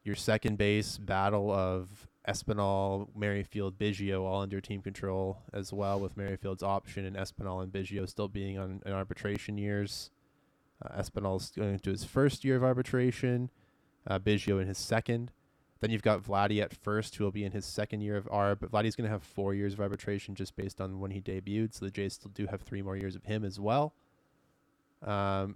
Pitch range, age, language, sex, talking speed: 95-110 Hz, 20-39, English, male, 200 wpm